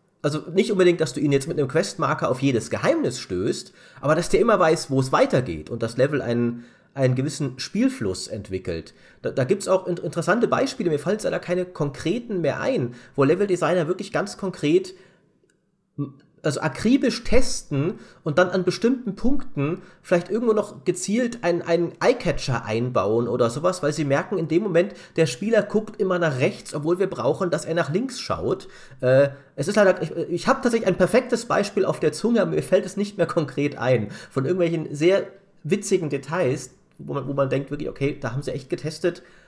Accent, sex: German, male